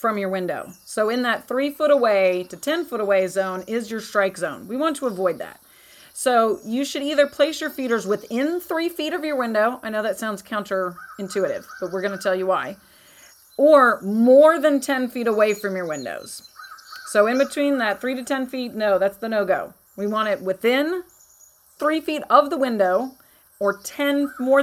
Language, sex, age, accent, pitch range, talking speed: English, female, 30-49, American, 205-285 Hz, 195 wpm